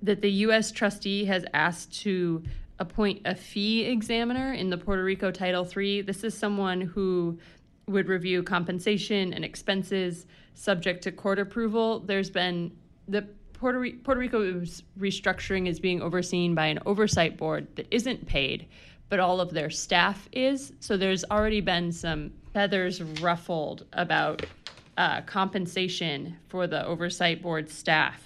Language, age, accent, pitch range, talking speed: English, 20-39, American, 170-200 Hz, 145 wpm